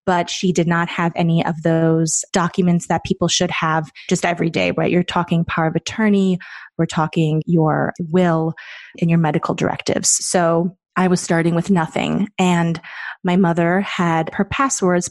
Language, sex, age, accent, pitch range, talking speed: English, female, 20-39, American, 165-195 Hz, 165 wpm